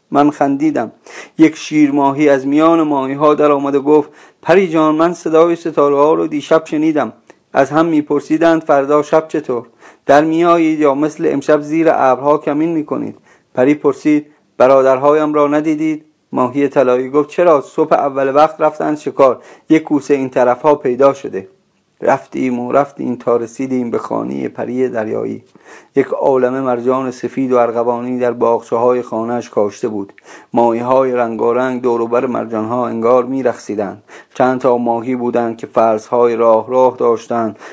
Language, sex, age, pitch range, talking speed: Persian, male, 40-59, 120-145 Hz, 145 wpm